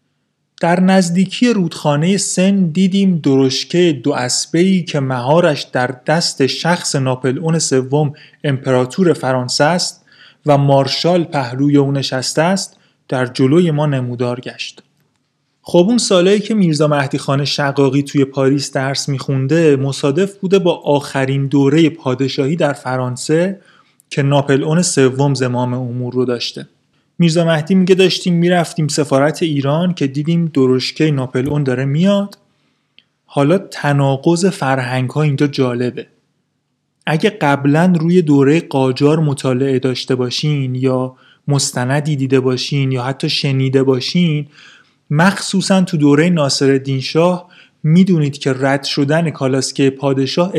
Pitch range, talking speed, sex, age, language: 135-170 Hz, 120 wpm, male, 30-49, Persian